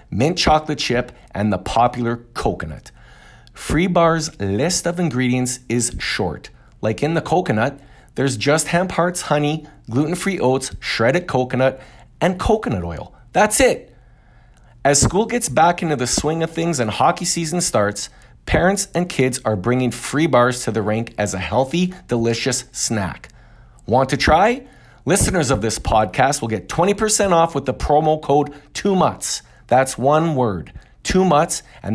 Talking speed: 155 wpm